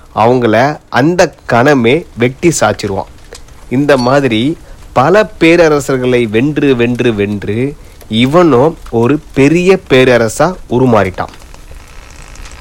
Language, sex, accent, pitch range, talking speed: Tamil, male, native, 110-155 Hz, 80 wpm